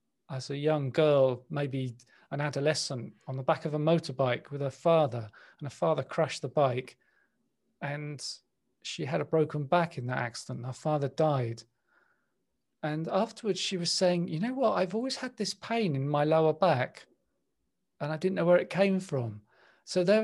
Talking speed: 185 wpm